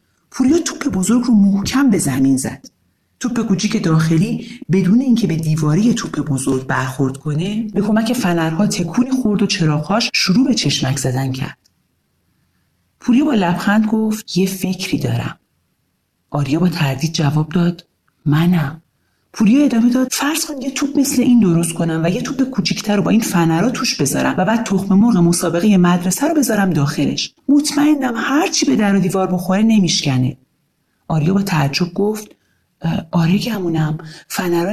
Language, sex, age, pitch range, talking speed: Persian, male, 40-59, 155-230 Hz, 155 wpm